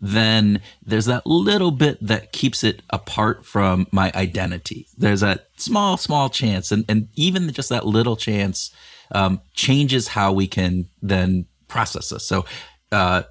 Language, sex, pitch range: English, male, 95-115 Hz